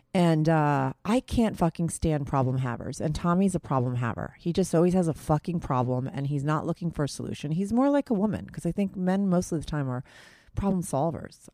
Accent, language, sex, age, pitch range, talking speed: American, English, female, 30-49, 135-185 Hz, 225 wpm